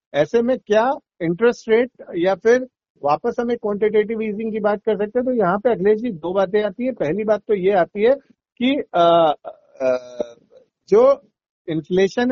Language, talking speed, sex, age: Hindi, 175 wpm, male, 50-69